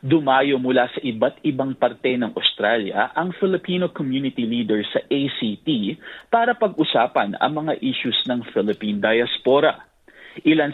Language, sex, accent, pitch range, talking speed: Filipino, male, native, 120-165 Hz, 130 wpm